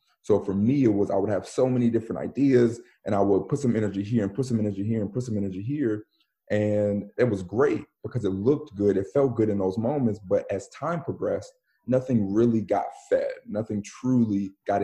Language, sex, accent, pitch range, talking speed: English, male, American, 95-115 Hz, 220 wpm